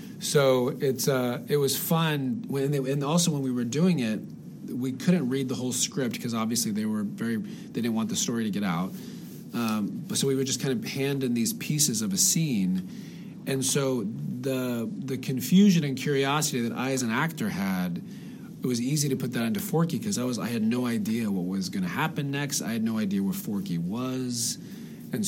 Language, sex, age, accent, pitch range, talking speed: English, male, 40-59, American, 130-205 Hz, 215 wpm